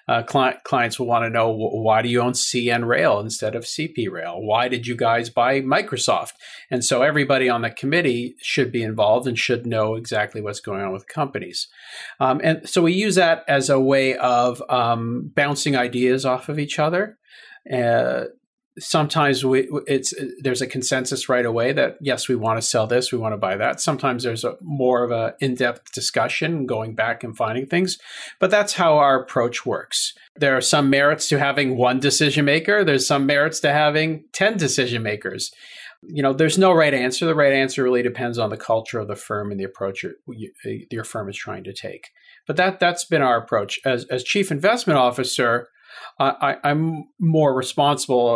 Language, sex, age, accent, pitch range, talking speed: English, male, 40-59, American, 115-145 Hz, 195 wpm